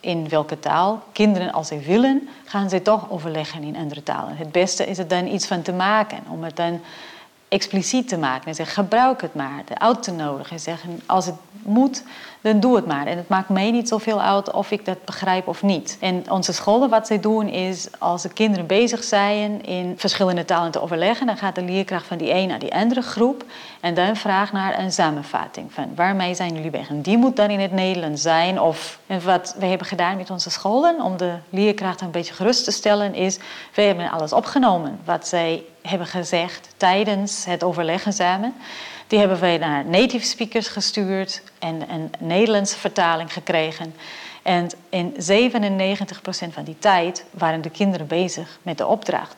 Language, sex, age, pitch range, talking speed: Dutch, female, 40-59, 170-210 Hz, 195 wpm